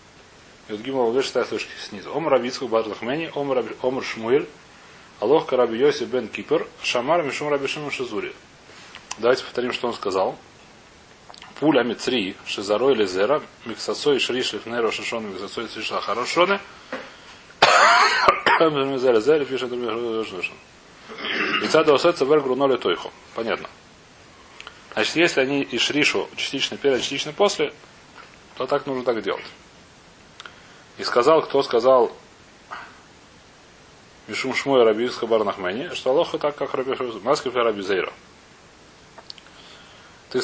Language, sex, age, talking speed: Russian, male, 30-49, 75 wpm